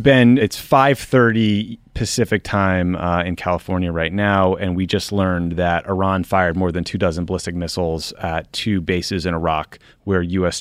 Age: 30-49